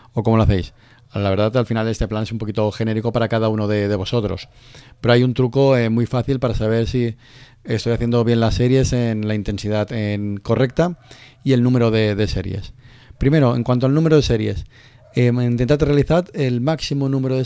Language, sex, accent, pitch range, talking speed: Spanish, male, Spanish, 110-130 Hz, 205 wpm